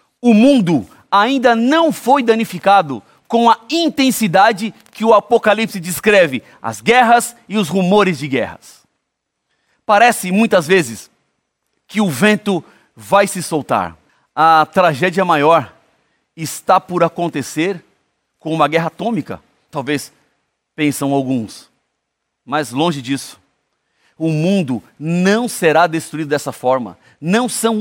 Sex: male